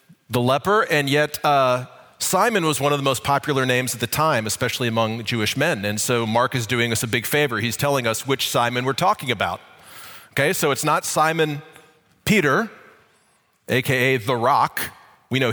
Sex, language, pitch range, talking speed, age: male, English, 120-155 Hz, 185 wpm, 40-59